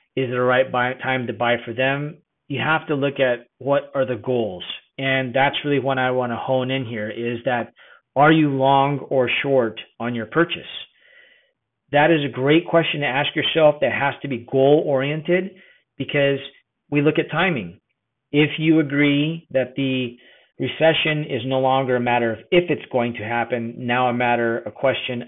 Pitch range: 125-145 Hz